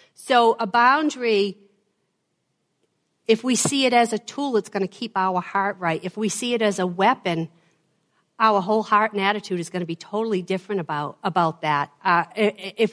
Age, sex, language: 50-69, female, English